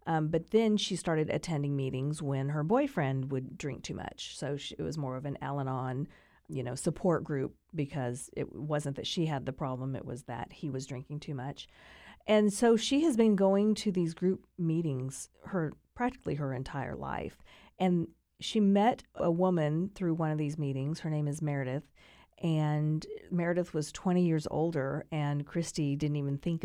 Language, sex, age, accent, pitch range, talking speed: English, female, 40-59, American, 140-185 Hz, 185 wpm